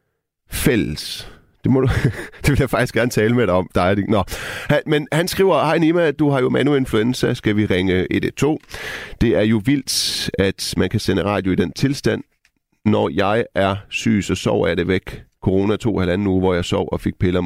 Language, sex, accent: Danish, male, native